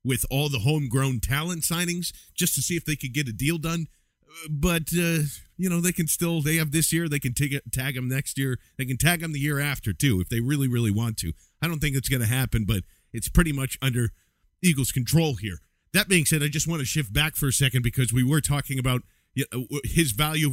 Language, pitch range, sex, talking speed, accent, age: English, 120-155 Hz, male, 245 wpm, American, 40-59